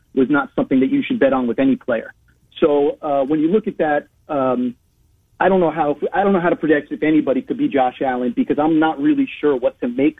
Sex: male